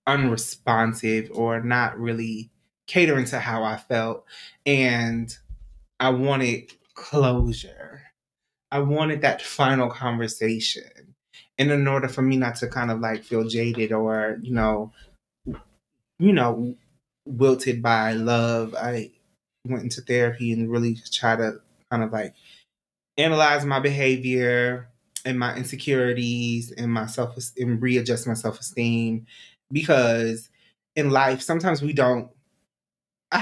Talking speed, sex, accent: 125 wpm, male, American